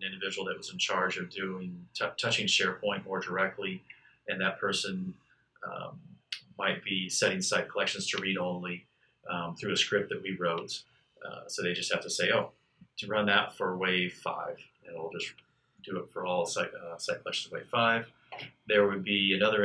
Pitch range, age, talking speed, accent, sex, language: 90-110 Hz, 30-49, 185 wpm, American, male, English